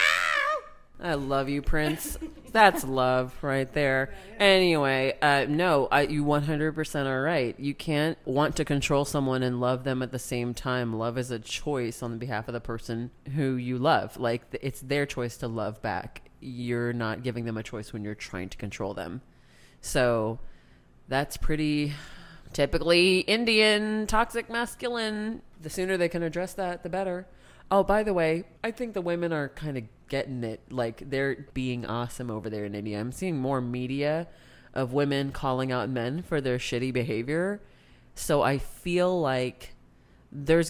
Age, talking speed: 30-49, 170 wpm